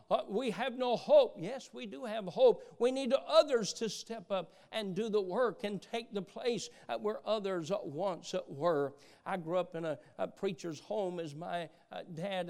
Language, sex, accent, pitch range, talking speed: English, male, American, 160-200 Hz, 205 wpm